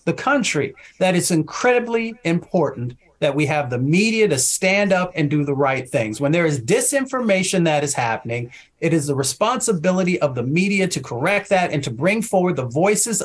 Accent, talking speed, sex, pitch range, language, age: American, 190 wpm, male, 150-200 Hz, English, 40-59